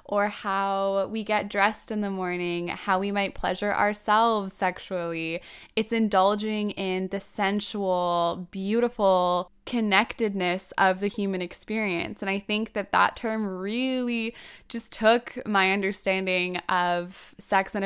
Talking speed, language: 130 wpm, English